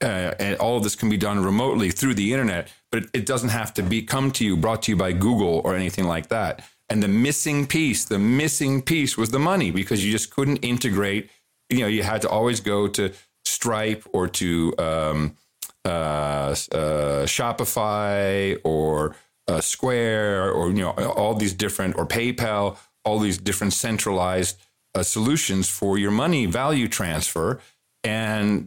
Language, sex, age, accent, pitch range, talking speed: English, male, 40-59, American, 100-130 Hz, 175 wpm